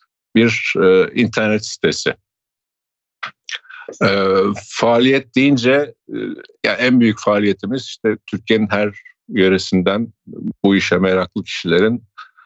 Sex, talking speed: male, 95 wpm